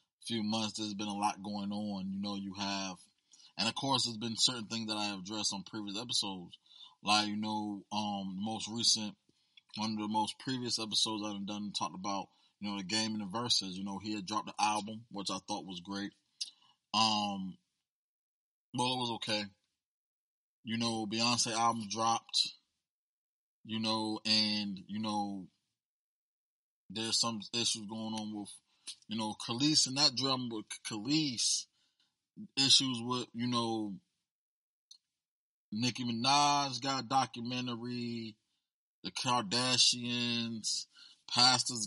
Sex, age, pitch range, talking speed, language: male, 20-39, 105-120 Hz, 145 wpm, English